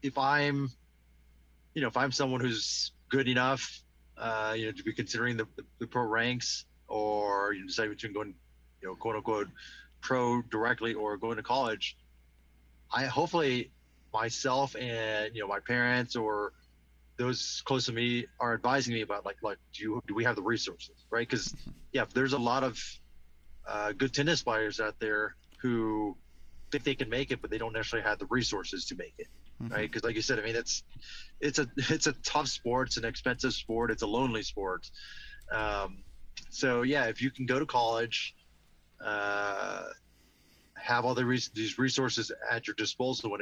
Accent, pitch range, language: American, 100-125 Hz, English